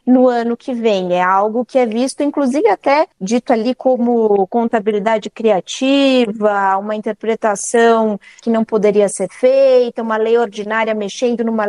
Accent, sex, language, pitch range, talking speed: Brazilian, female, Portuguese, 220-260 Hz, 145 wpm